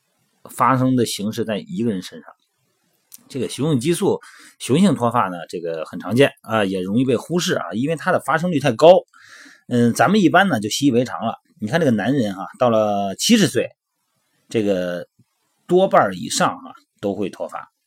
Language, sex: Chinese, male